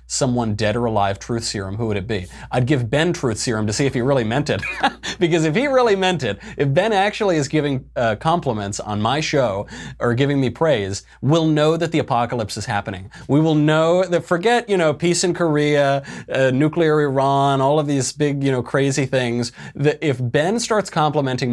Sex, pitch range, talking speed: male, 110-150 Hz, 210 wpm